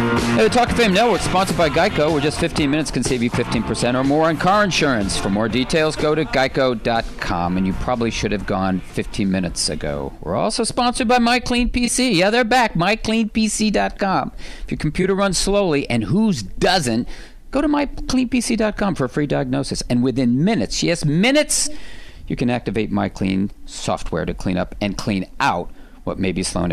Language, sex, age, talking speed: English, male, 50-69, 180 wpm